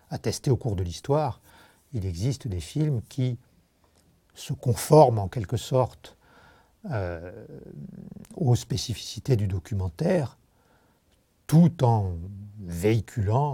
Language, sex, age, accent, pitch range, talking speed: French, male, 60-79, French, 95-130 Hz, 100 wpm